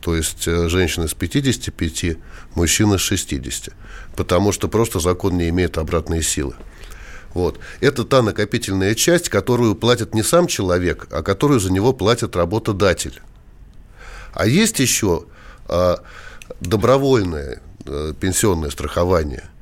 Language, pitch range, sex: Russian, 85-110 Hz, male